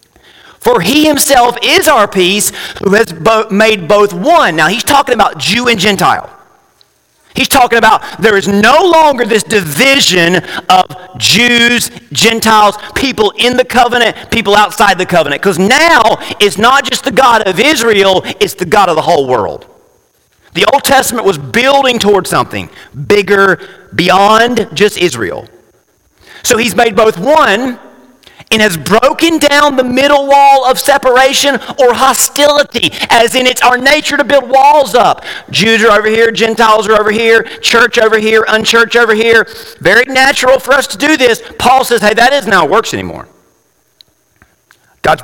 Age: 40-59